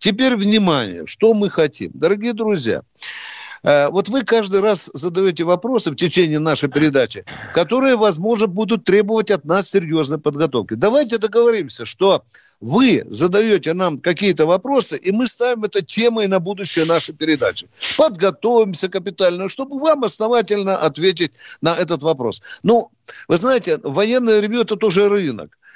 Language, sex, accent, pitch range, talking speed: Russian, male, native, 155-220 Hz, 135 wpm